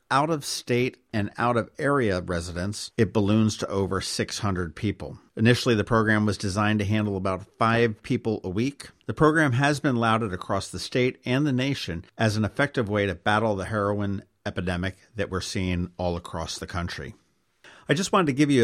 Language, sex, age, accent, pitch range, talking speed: English, male, 50-69, American, 100-125 Hz, 175 wpm